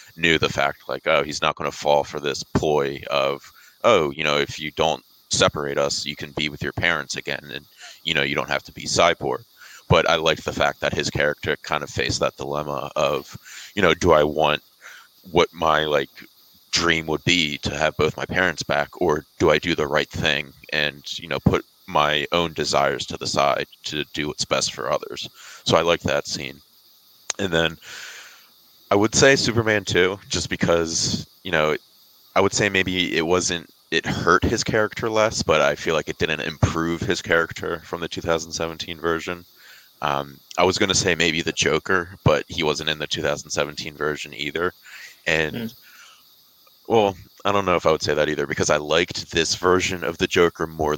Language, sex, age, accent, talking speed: English, male, 30-49, American, 200 wpm